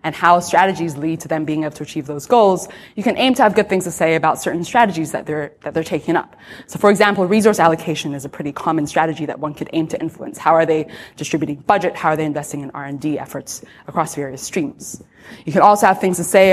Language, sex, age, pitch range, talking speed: English, female, 20-39, 155-200 Hz, 245 wpm